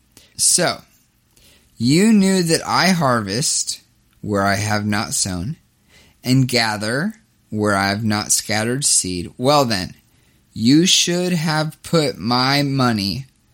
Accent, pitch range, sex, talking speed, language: American, 115-145 Hz, male, 120 wpm, English